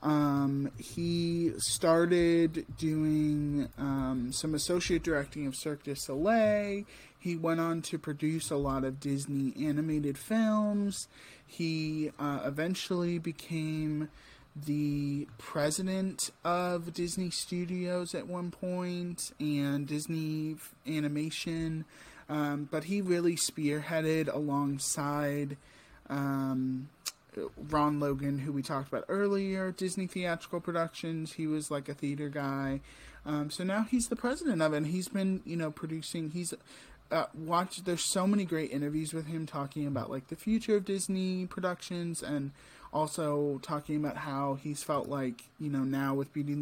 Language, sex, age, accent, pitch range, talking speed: English, male, 20-39, American, 140-175 Hz, 135 wpm